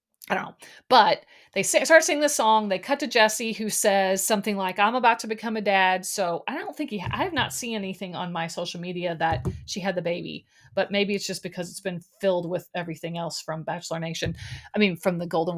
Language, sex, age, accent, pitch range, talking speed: English, female, 30-49, American, 190-260 Hz, 240 wpm